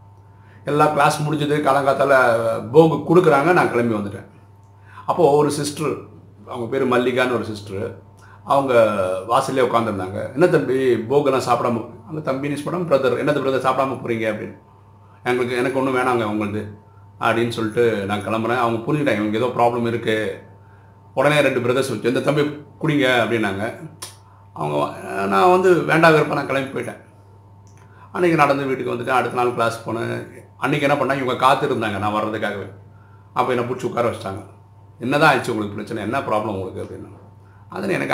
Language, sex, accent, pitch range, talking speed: Tamil, male, native, 100-130 Hz, 155 wpm